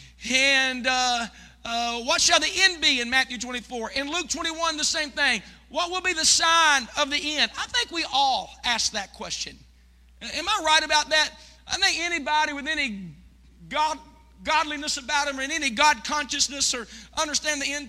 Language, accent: English, American